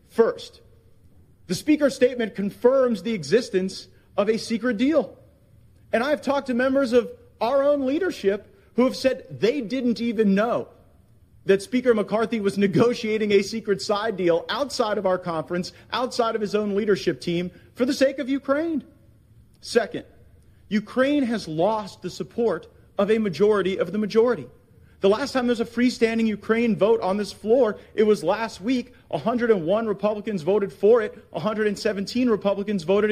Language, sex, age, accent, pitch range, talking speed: English, male, 40-59, American, 185-240 Hz, 160 wpm